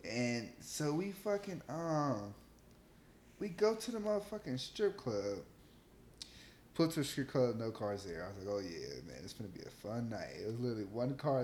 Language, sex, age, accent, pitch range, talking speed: English, male, 10-29, American, 110-145 Hz, 205 wpm